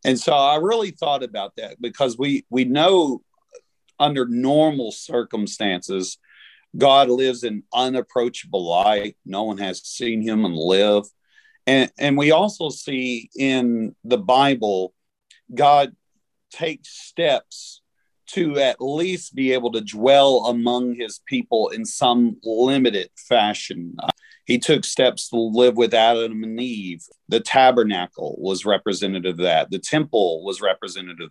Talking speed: 135 wpm